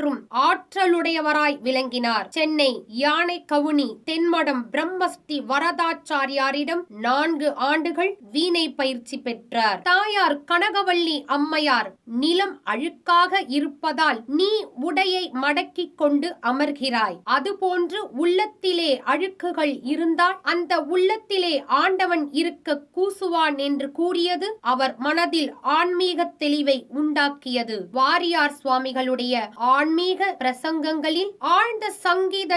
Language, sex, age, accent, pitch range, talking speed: Tamil, female, 20-39, native, 285-355 Hz, 65 wpm